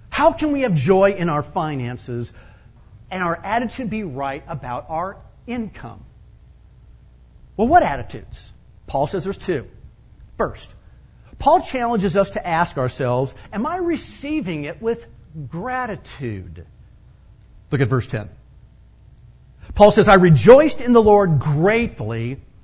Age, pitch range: 50-69, 130-210 Hz